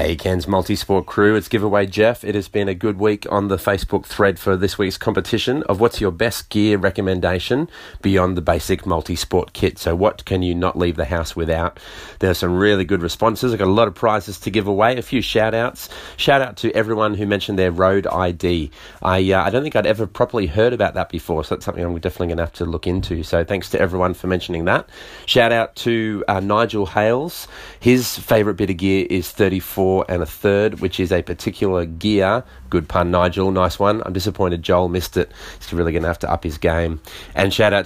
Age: 30-49